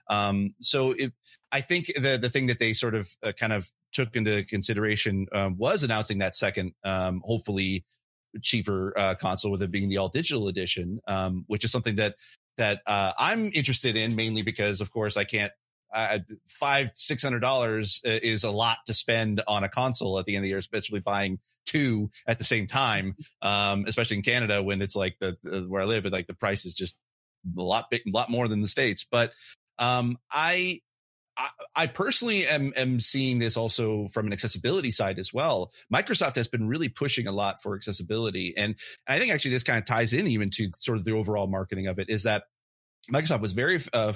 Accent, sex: American, male